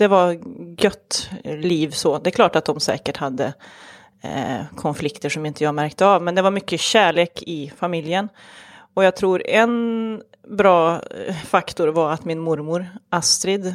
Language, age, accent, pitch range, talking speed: English, 30-49, Swedish, 160-205 Hz, 160 wpm